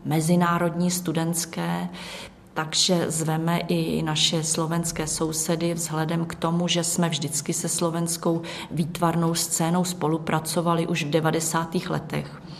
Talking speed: 110 wpm